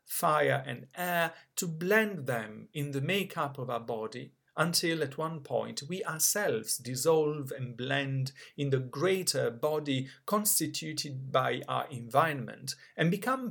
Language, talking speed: English, 140 wpm